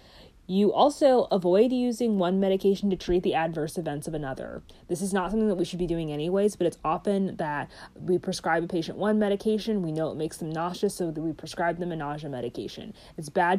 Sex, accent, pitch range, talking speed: female, American, 160-200 Hz, 215 wpm